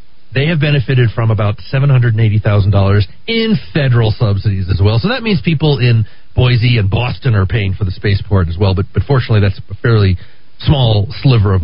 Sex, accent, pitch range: male, American, 100-130 Hz